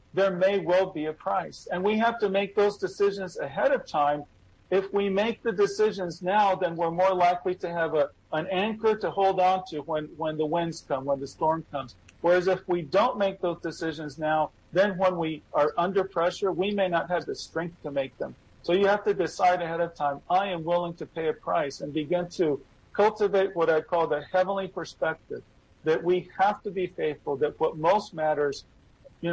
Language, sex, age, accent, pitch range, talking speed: English, male, 50-69, American, 160-195 Hz, 210 wpm